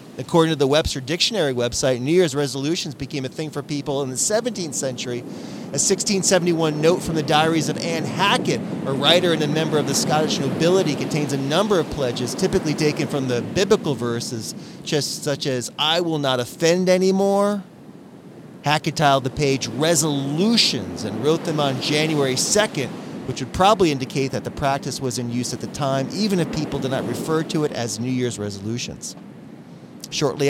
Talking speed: 180 wpm